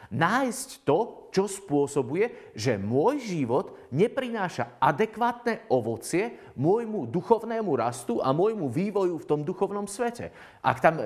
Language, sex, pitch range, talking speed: Slovak, male, 125-180 Hz, 120 wpm